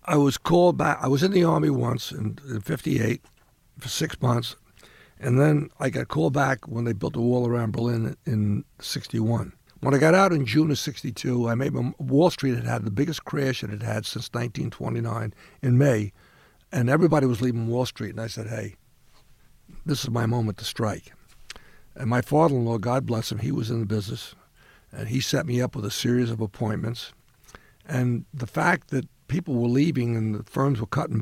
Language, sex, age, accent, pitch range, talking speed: English, male, 60-79, American, 115-140 Hz, 205 wpm